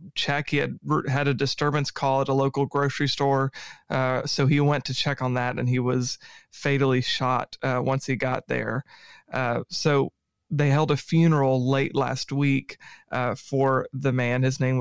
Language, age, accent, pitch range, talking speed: English, 30-49, American, 130-150 Hz, 180 wpm